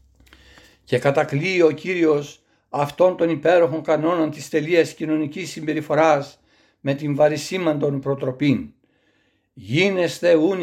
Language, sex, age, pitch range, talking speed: Greek, male, 60-79, 140-165 Hz, 100 wpm